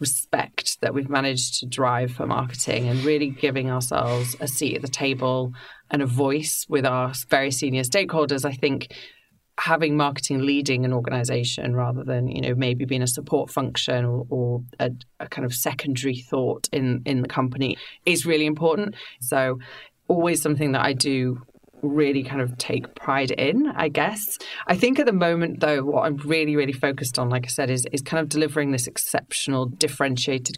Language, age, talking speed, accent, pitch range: English, 30-49, 180 wpm, British, 130-150 Hz